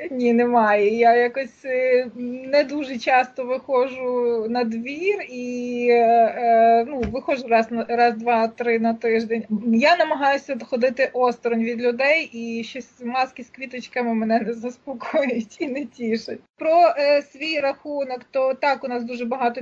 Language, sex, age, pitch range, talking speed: Ukrainian, female, 20-39, 230-265 Hz, 135 wpm